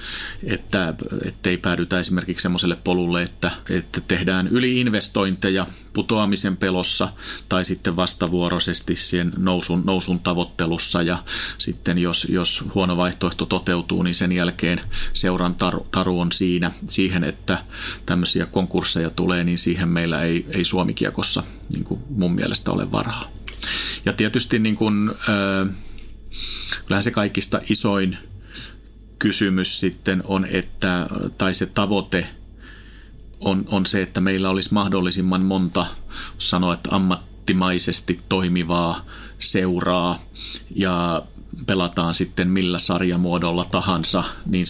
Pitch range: 90-95 Hz